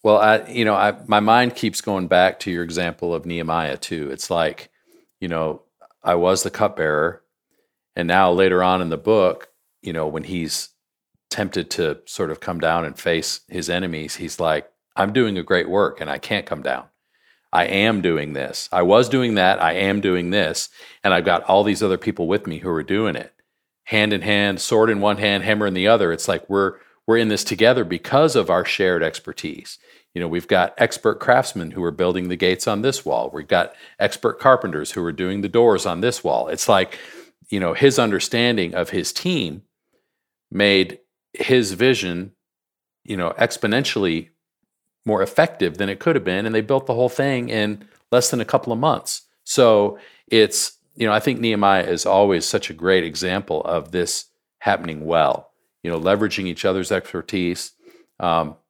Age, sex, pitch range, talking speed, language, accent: 50-69, male, 85-110 Hz, 195 wpm, English, American